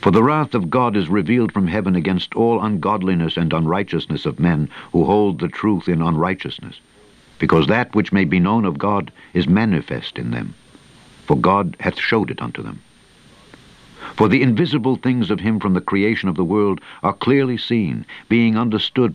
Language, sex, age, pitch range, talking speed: English, male, 60-79, 95-115 Hz, 180 wpm